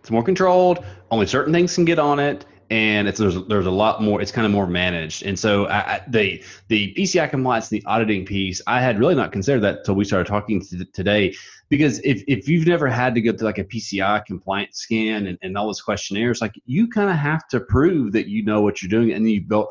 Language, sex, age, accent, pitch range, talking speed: English, male, 30-49, American, 95-115 Hz, 245 wpm